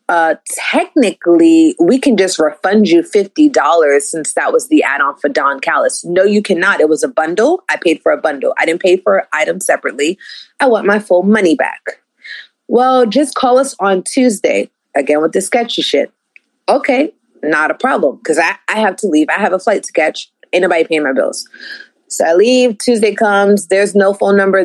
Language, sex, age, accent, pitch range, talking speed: English, female, 30-49, American, 165-245 Hz, 195 wpm